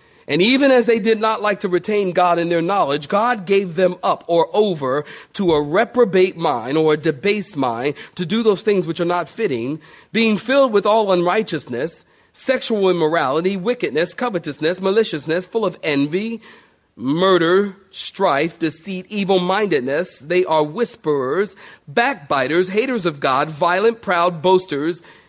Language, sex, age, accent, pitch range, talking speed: English, male, 40-59, American, 160-210 Hz, 150 wpm